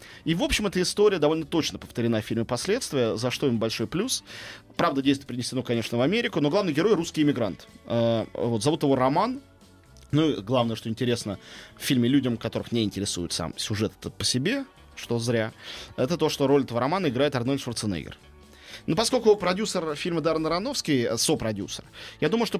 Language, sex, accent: Russian, male, native